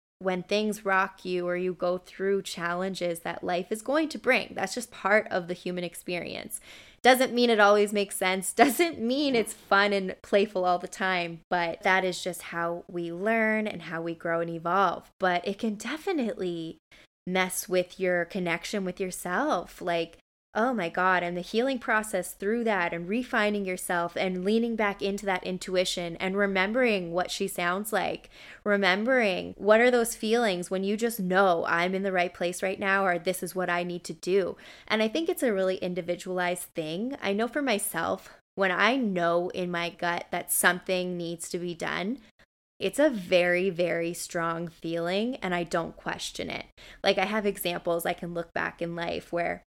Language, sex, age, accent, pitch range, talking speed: English, female, 20-39, American, 175-210 Hz, 185 wpm